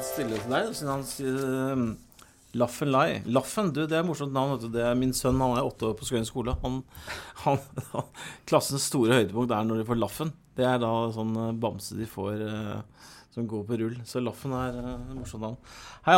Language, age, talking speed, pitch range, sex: English, 30-49, 195 wpm, 110-135 Hz, male